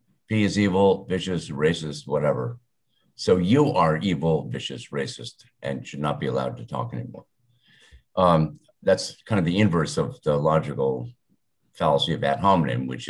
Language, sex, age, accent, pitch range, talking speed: English, male, 50-69, American, 75-105 Hz, 150 wpm